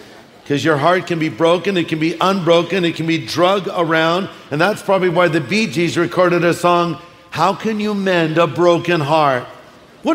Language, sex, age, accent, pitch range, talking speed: English, male, 50-69, American, 165-210 Hz, 200 wpm